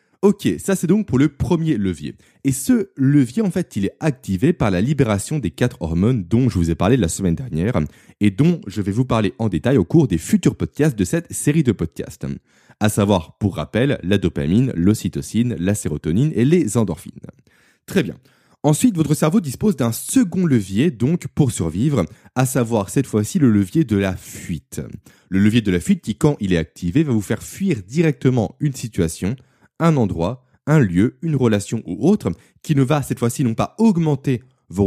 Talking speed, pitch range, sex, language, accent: 200 wpm, 95-140 Hz, male, French, French